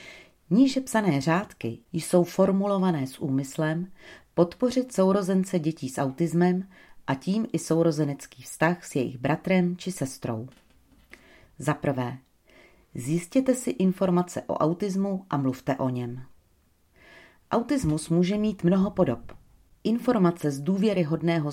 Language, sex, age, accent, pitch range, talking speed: Czech, female, 40-59, native, 135-180 Hz, 110 wpm